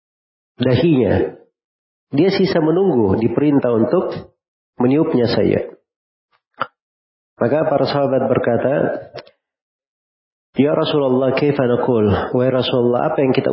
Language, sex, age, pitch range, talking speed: Indonesian, male, 40-59, 105-125 Hz, 95 wpm